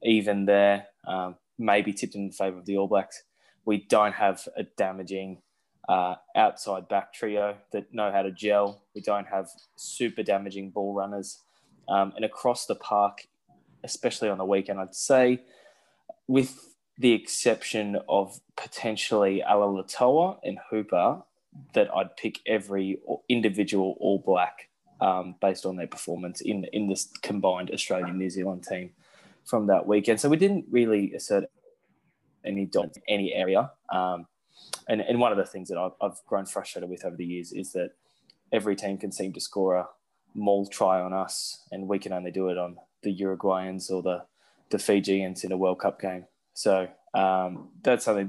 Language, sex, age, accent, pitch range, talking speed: English, male, 20-39, Australian, 95-105 Hz, 165 wpm